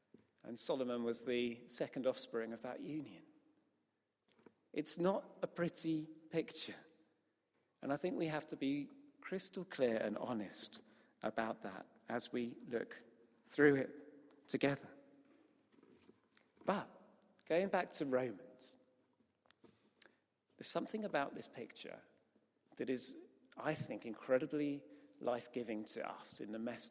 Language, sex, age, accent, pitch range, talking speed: English, male, 40-59, British, 120-155 Hz, 120 wpm